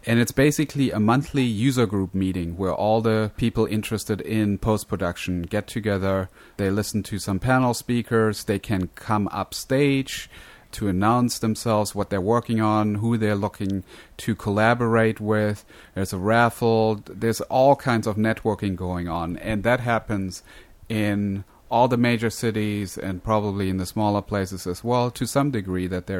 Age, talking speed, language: 30-49, 165 wpm, English